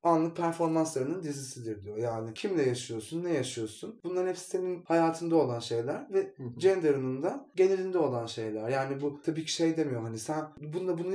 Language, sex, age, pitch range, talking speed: Turkish, male, 30-49, 120-180 Hz, 165 wpm